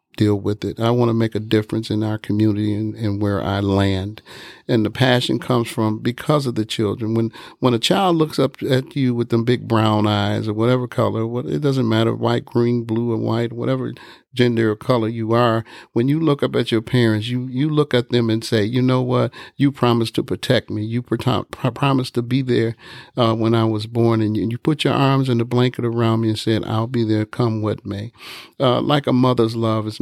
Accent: American